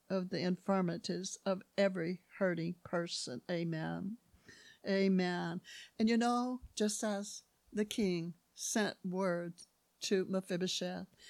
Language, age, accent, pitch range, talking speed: English, 60-79, American, 190-280 Hz, 105 wpm